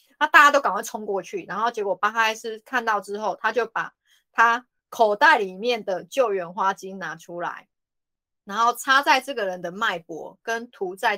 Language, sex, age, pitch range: Chinese, female, 20-39, 200-275 Hz